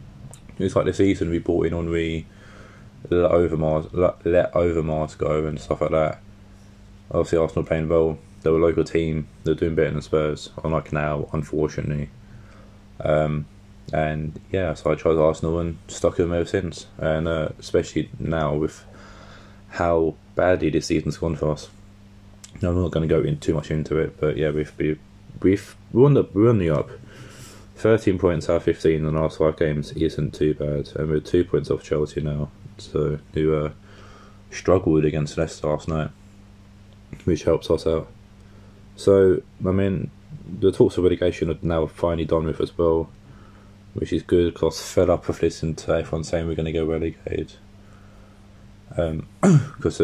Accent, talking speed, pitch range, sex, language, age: British, 170 wpm, 80-100 Hz, male, English, 20-39